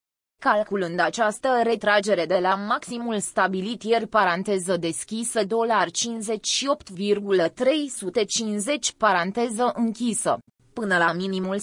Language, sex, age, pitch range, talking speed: Romanian, female, 20-39, 185-235 Hz, 85 wpm